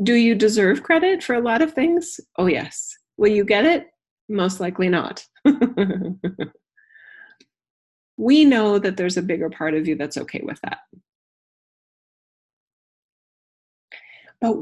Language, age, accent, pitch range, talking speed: English, 30-49, American, 190-280 Hz, 130 wpm